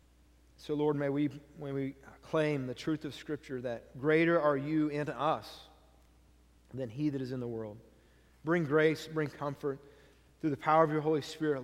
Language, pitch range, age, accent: English, 130-160 Hz, 40-59, American